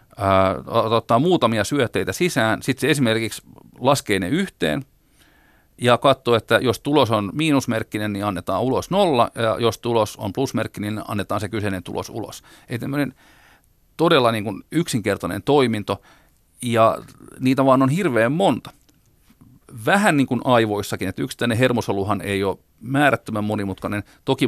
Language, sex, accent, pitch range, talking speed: Finnish, male, native, 100-125 Hz, 135 wpm